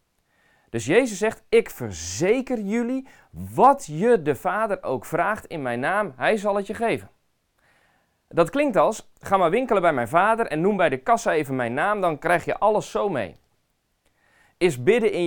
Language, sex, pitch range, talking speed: Dutch, male, 120-170 Hz, 180 wpm